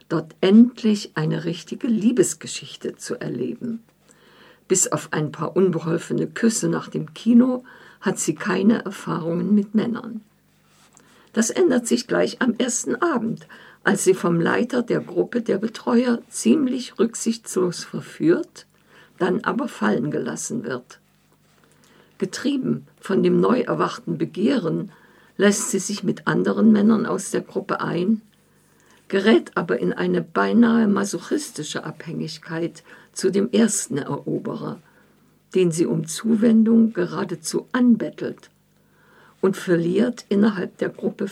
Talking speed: 120 wpm